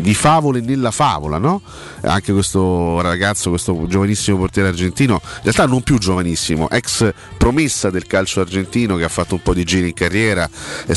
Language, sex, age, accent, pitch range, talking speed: Italian, male, 40-59, native, 85-110 Hz, 175 wpm